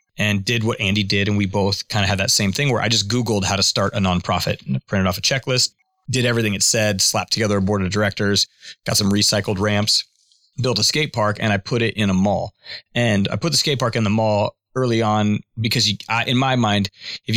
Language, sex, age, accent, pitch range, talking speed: English, male, 30-49, American, 100-115 Hz, 240 wpm